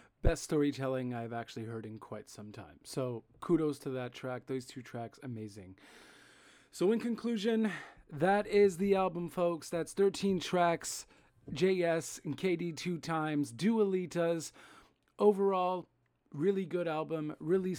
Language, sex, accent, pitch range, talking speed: English, male, American, 135-180 Hz, 135 wpm